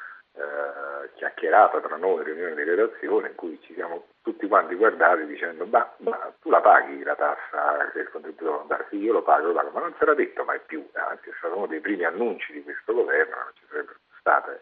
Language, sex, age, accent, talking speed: Italian, male, 50-69, native, 220 wpm